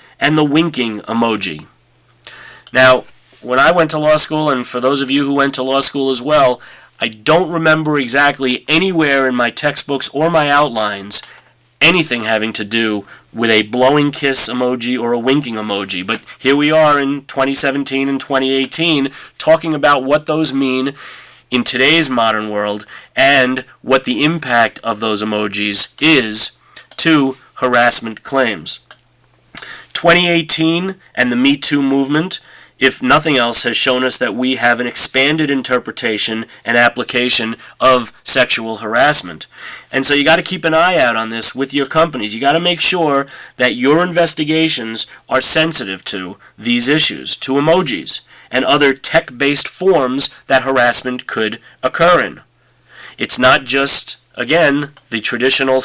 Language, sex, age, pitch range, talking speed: English, male, 30-49, 120-150 Hz, 150 wpm